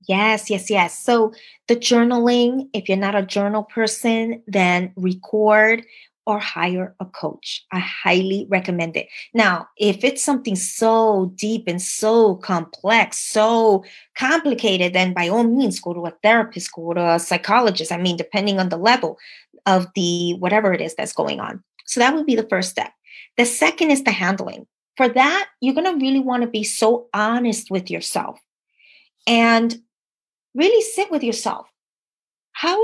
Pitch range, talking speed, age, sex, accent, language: 200-260 Hz, 165 wpm, 20-39, female, American, English